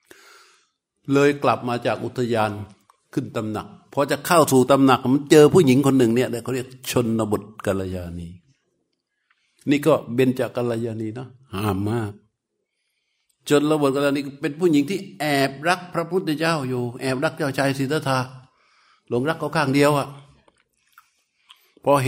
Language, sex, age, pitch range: Thai, male, 60-79, 120-150 Hz